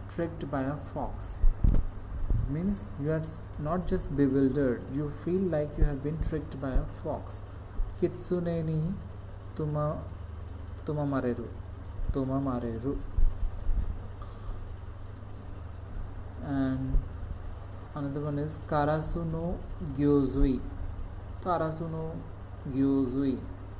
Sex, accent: male, Indian